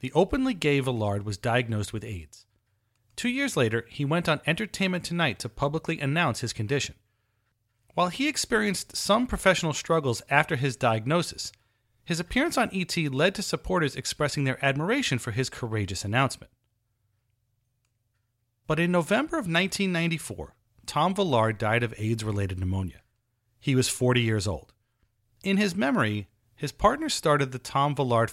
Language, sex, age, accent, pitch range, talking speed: English, male, 30-49, American, 110-150 Hz, 145 wpm